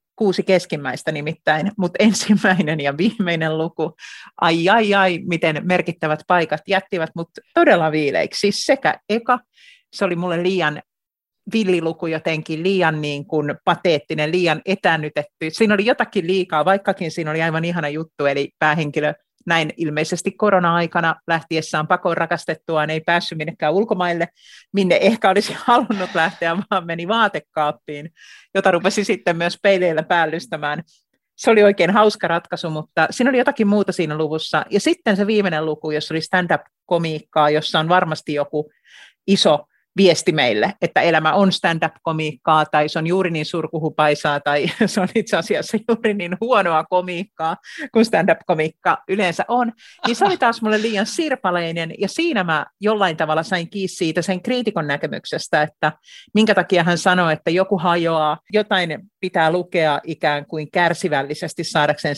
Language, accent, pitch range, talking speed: Finnish, native, 155-195 Hz, 145 wpm